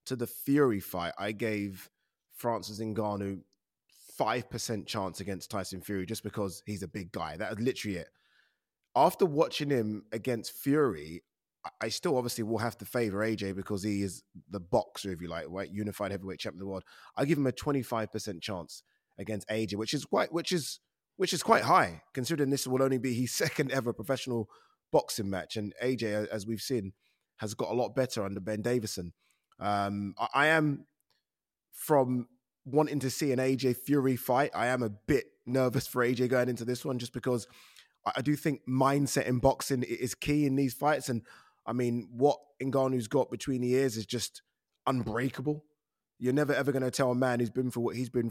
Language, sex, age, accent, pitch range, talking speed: English, male, 20-39, British, 105-135 Hz, 190 wpm